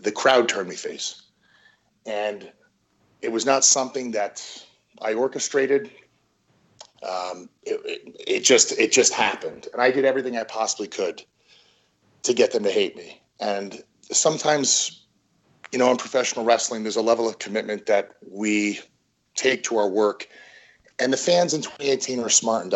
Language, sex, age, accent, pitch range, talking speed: English, male, 40-59, American, 105-135 Hz, 155 wpm